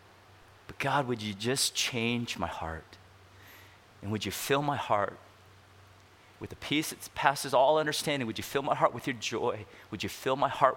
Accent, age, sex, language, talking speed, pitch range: American, 30-49, male, English, 185 wpm, 95-115 Hz